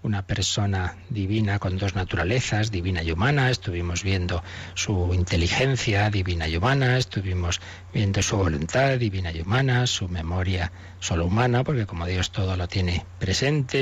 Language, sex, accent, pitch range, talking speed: Spanish, male, Spanish, 95-125 Hz, 150 wpm